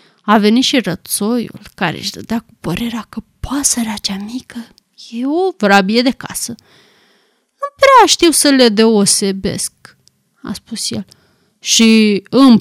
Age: 20-39